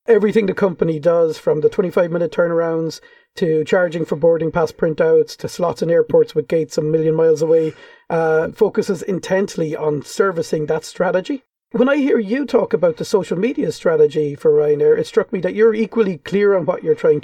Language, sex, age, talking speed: English, male, 40-59, 190 wpm